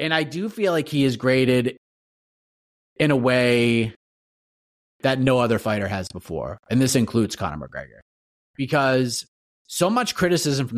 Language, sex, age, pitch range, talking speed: English, male, 30-49, 110-150 Hz, 150 wpm